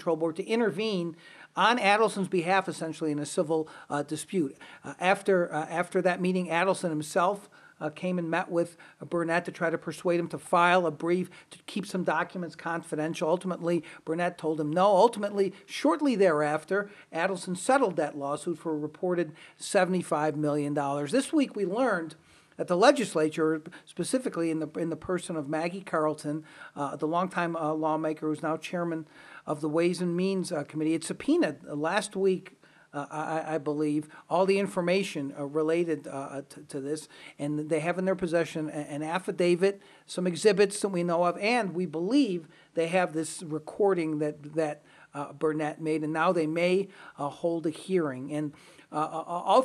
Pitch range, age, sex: 155-185 Hz, 50-69, male